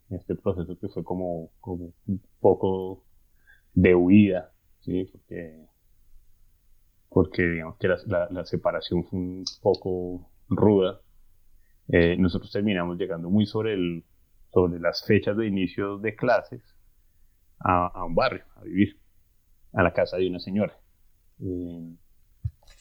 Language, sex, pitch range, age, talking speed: Spanish, male, 85-100 Hz, 30-49, 130 wpm